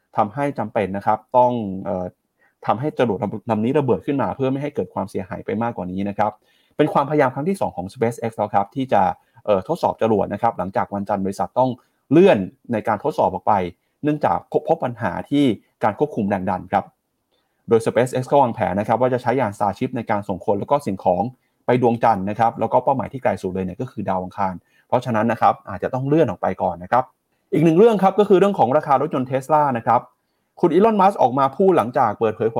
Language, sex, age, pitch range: Thai, male, 30-49, 105-145 Hz